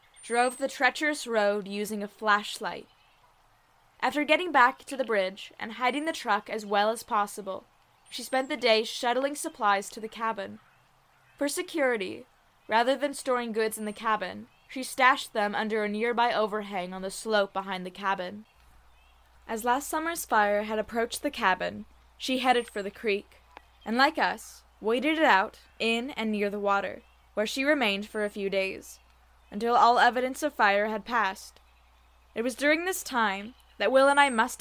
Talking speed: 175 wpm